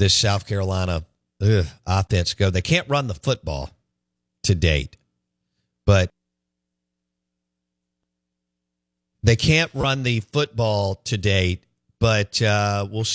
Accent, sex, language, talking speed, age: American, male, English, 105 wpm, 50-69